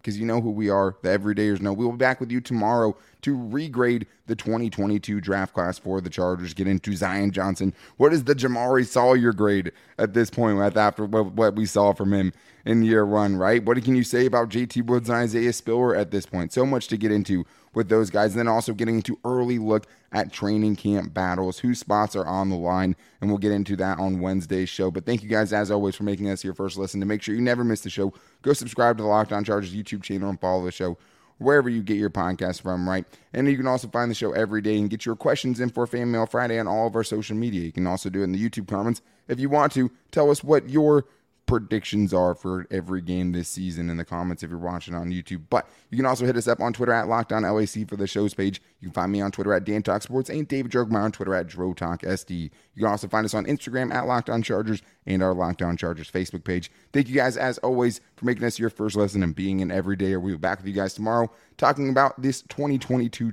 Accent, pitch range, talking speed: American, 95-120 Hz, 250 wpm